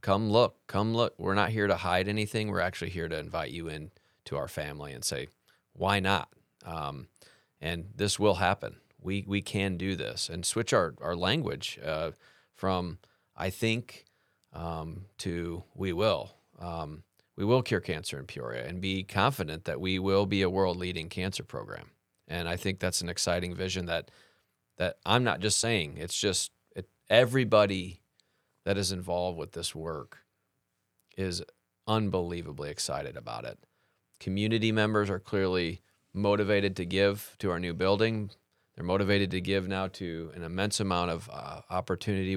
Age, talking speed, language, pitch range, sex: 30-49, 165 wpm, English, 85-100 Hz, male